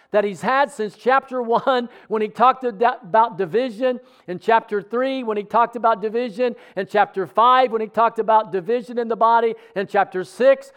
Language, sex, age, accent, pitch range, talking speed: English, male, 50-69, American, 200-245 Hz, 185 wpm